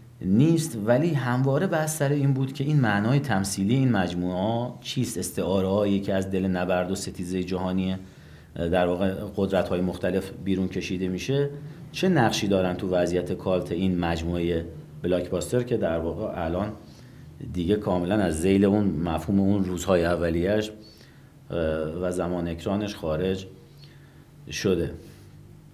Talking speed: 135 wpm